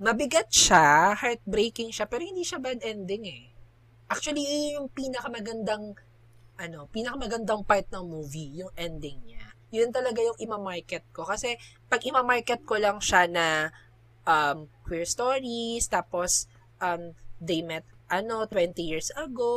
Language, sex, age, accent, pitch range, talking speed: Filipino, female, 20-39, native, 150-210 Hz, 140 wpm